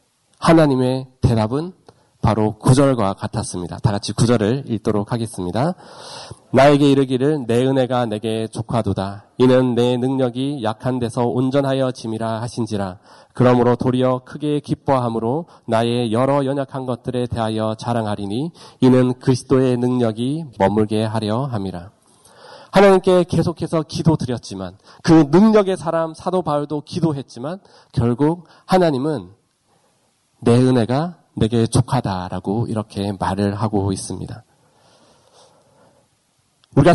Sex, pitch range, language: male, 115-155 Hz, Korean